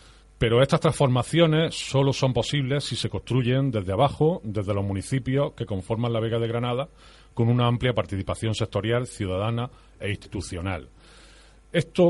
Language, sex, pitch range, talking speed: Spanish, male, 100-125 Hz, 145 wpm